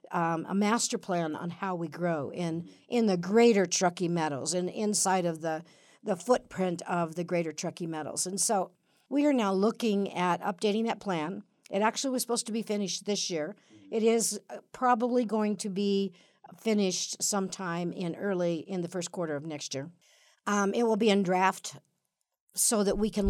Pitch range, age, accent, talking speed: 170-210 Hz, 60-79, American, 185 wpm